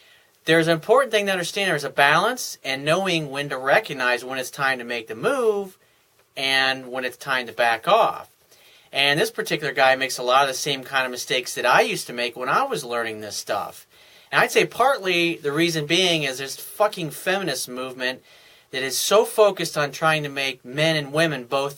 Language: English